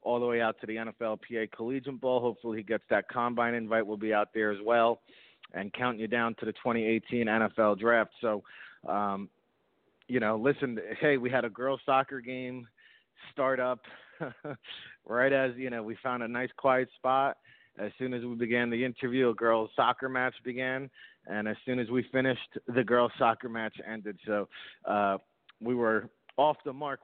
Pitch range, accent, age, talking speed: 115-135 Hz, American, 40-59, 190 wpm